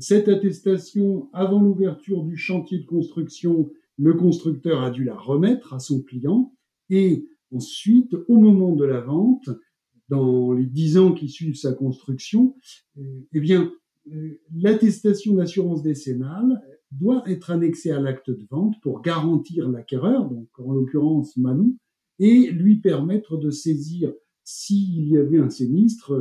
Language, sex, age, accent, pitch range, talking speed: French, male, 60-79, French, 140-190 Hz, 140 wpm